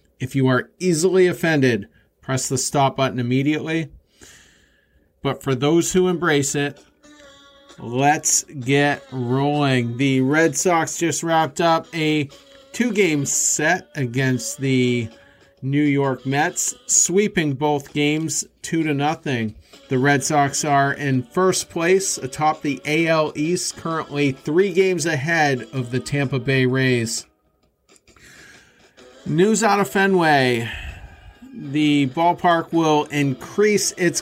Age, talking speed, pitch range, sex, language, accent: 40-59, 120 wpm, 130-160 Hz, male, English, American